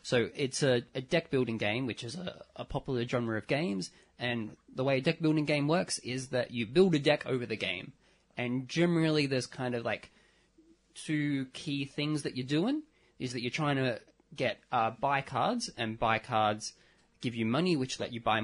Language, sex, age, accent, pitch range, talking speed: English, male, 20-39, Australian, 115-135 Hz, 200 wpm